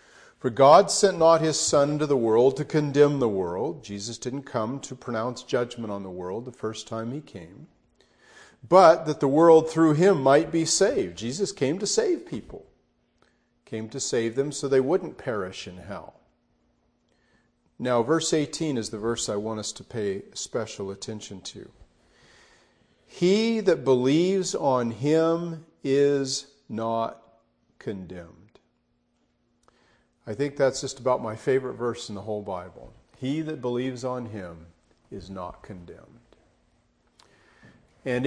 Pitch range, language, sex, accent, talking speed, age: 110-145 Hz, English, male, American, 145 wpm, 50-69